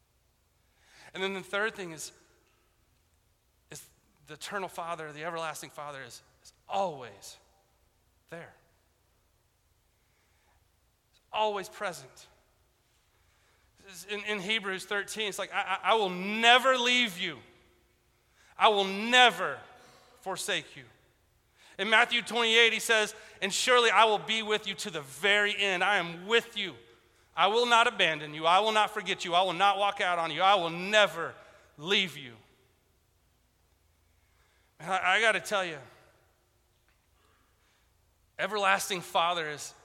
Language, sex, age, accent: English, male, 30-49, American